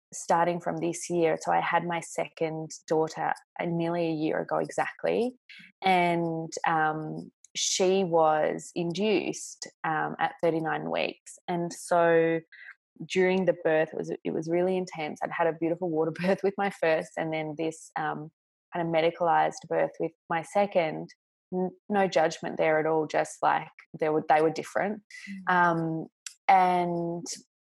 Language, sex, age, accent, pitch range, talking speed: English, female, 20-39, Australian, 160-185 Hz, 145 wpm